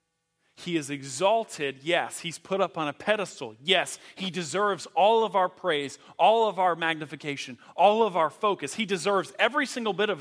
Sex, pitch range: male, 170-225 Hz